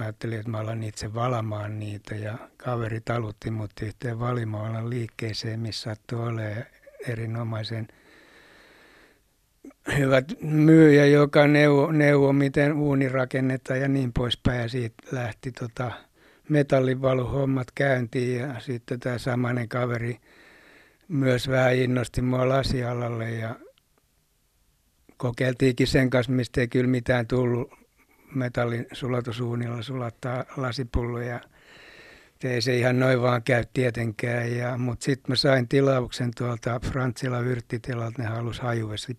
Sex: male